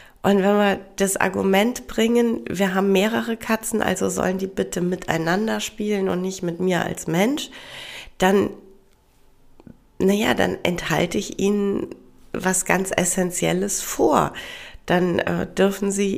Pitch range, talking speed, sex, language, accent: 170-220 Hz, 135 wpm, female, German, German